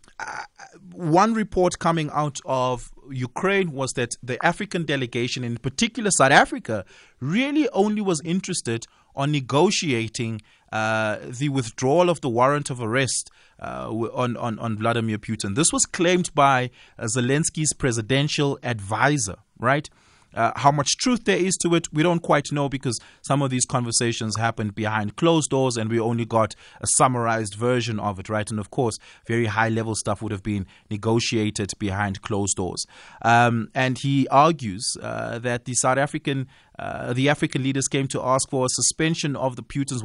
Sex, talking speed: male, 170 wpm